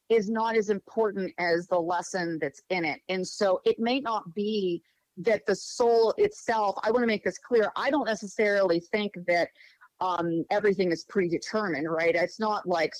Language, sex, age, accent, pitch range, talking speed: English, female, 40-59, American, 175-220 Hz, 180 wpm